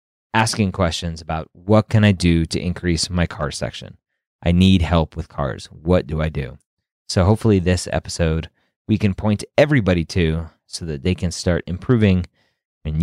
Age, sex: 30-49, male